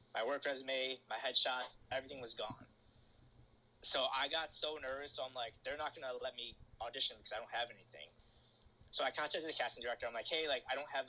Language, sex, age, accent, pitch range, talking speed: English, male, 20-39, American, 115-135 Hz, 215 wpm